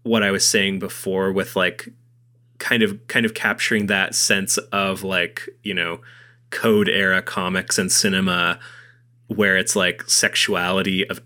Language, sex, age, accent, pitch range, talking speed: English, male, 20-39, American, 95-120 Hz, 150 wpm